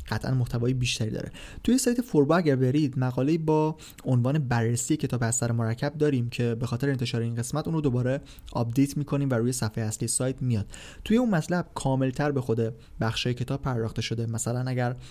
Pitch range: 120-150 Hz